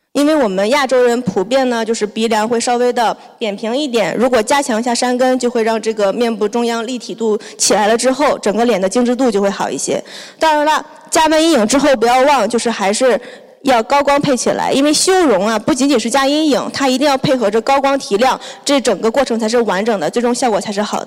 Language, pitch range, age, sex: Chinese, 220-280 Hz, 20-39, female